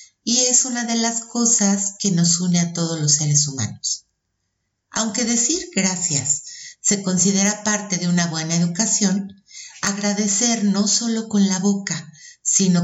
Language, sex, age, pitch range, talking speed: Spanish, female, 50-69, 170-225 Hz, 145 wpm